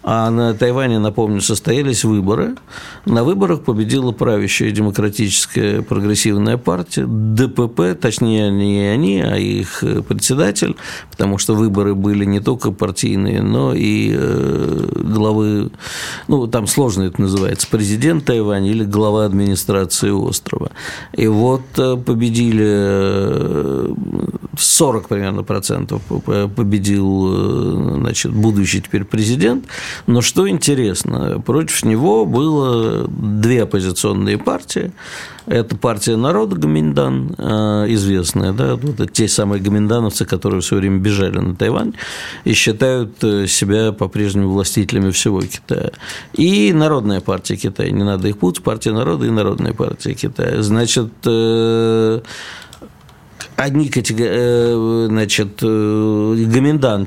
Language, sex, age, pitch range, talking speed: Russian, male, 50-69, 100-125 Hz, 110 wpm